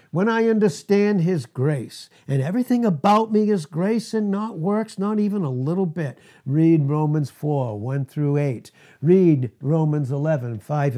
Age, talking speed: 60-79, 160 wpm